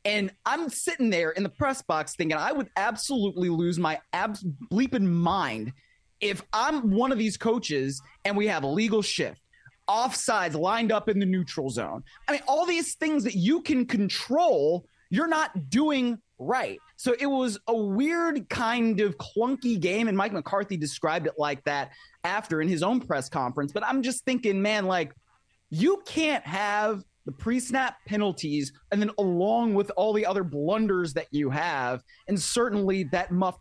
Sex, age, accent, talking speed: male, 30-49, American, 175 wpm